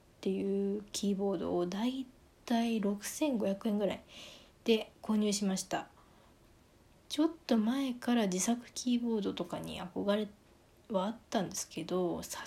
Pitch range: 190-245 Hz